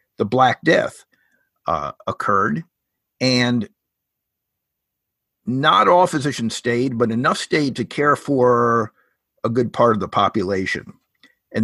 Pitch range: 105-140 Hz